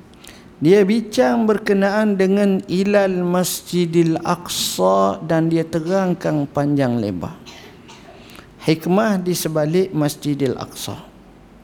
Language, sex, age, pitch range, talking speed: Malay, male, 50-69, 145-205 Hz, 90 wpm